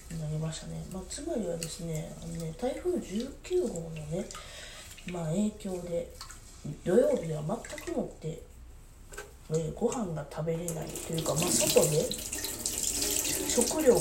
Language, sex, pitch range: Japanese, female, 155-230 Hz